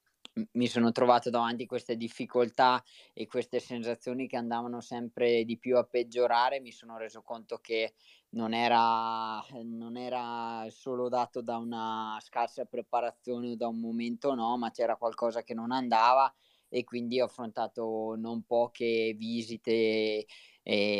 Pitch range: 110-125 Hz